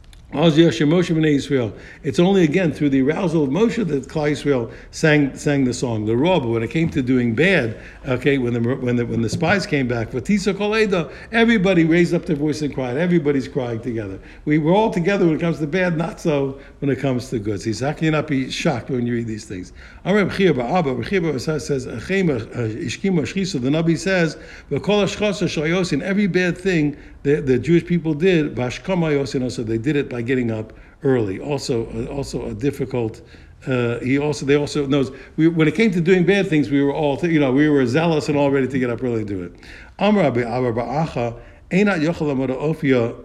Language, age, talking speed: English, 60-79, 180 wpm